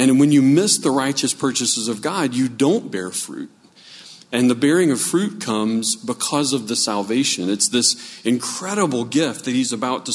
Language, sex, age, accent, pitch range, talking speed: English, male, 40-59, American, 110-160 Hz, 185 wpm